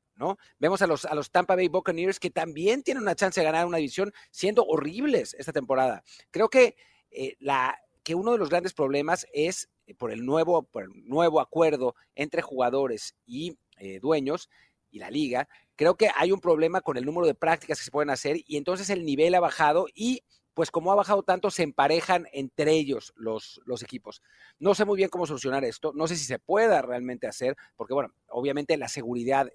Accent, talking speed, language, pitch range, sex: Mexican, 205 wpm, Spanish, 140-195 Hz, male